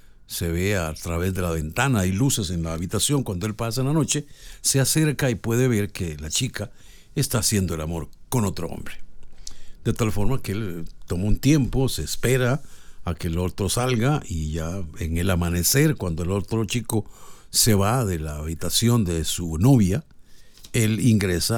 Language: Spanish